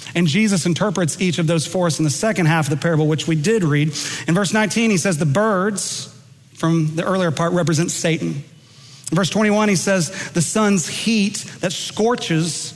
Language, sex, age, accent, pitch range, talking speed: English, male, 40-59, American, 150-185 Hz, 195 wpm